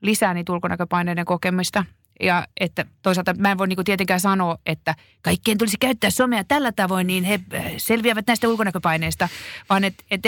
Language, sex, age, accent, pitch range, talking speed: Finnish, female, 30-49, native, 175-210 Hz, 165 wpm